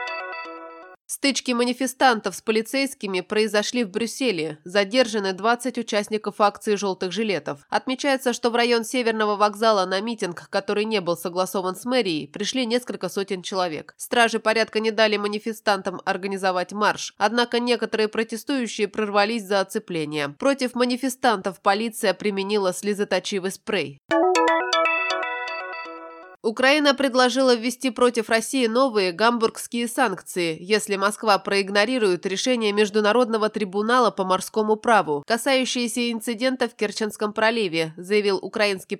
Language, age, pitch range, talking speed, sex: Russian, 20-39, 190-235 Hz, 115 wpm, female